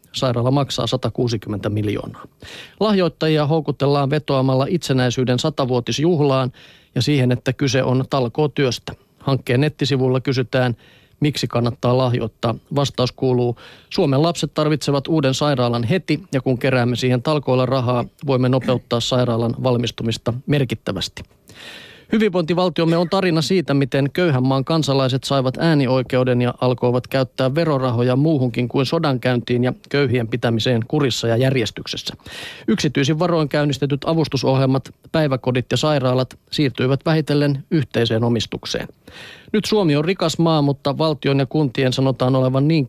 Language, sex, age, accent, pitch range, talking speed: Finnish, male, 30-49, native, 125-145 Hz, 120 wpm